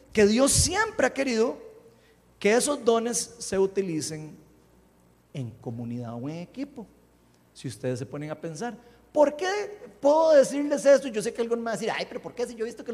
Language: Spanish